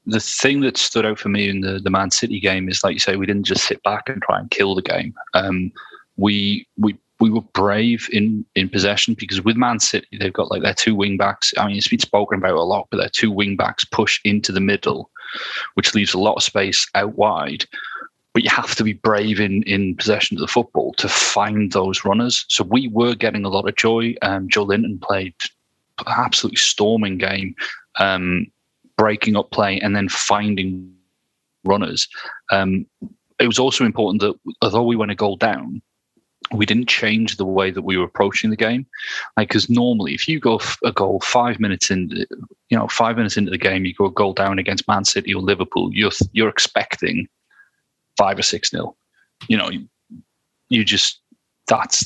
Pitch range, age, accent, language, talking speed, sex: 95-110 Hz, 30-49, British, English, 205 wpm, male